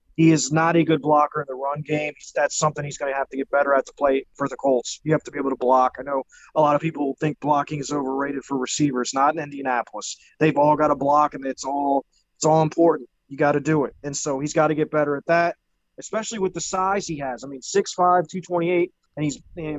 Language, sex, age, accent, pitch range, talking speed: English, male, 20-39, American, 140-160 Hz, 245 wpm